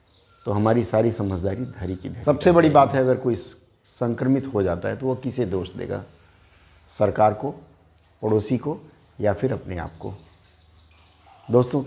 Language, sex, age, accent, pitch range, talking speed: Hindi, male, 50-69, native, 95-125 Hz, 155 wpm